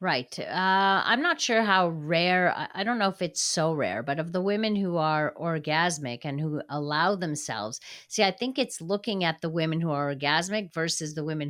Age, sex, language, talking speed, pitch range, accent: 50-69, female, English, 205 wpm, 150-190 Hz, American